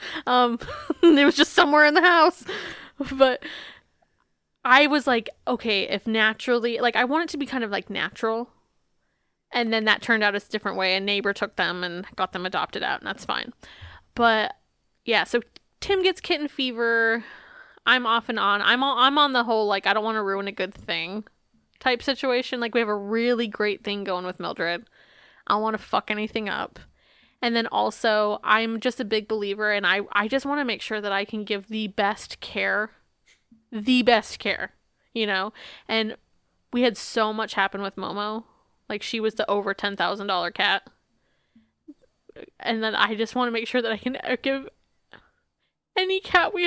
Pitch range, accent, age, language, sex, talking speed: 210-260 Hz, American, 20-39, English, female, 190 wpm